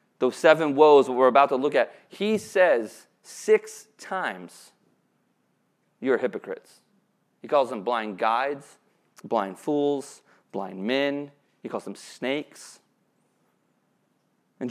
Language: English